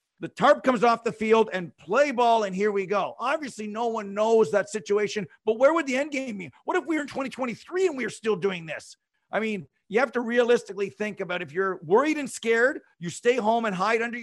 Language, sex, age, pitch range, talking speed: English, male, 50-69, 185-235 Hz, 240 wpm